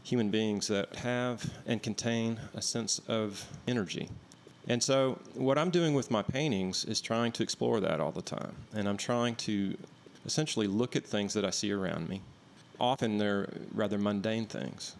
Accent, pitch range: American, 100-115 Hz